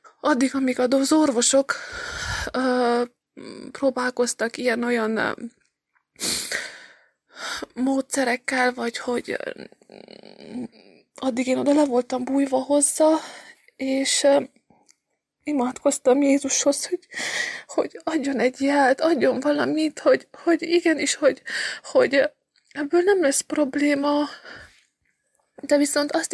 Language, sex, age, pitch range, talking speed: English, female, 20-39, 265-310 Hz, 95 wpm